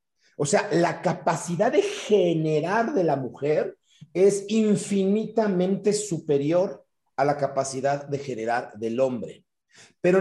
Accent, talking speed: Mexican, 120 wpm